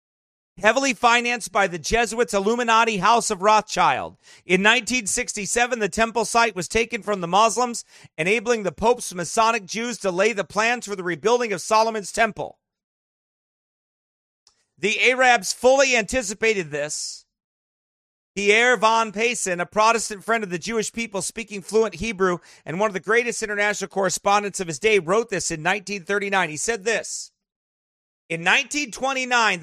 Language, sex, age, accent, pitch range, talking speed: English, male, 40-59, American, 190-235 Hz, 145 wpm